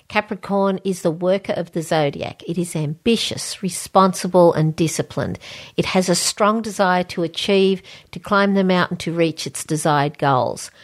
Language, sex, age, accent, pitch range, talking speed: English, female, 50-69, Australian, 170-195 Hz, 160 wpm